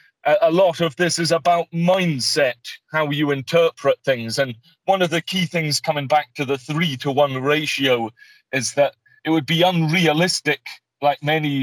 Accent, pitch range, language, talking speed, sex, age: British, 135-160 Hz, English, 170 wpm, male, 30-49